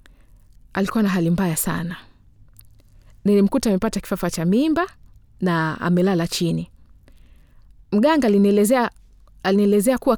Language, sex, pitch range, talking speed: Swahili, female, 170-225 Hz, 100 wpm